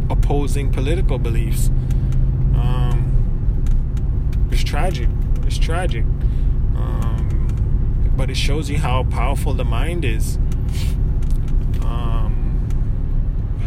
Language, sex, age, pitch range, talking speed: English, male, 20-39, 100-120 Hz, 85 wpm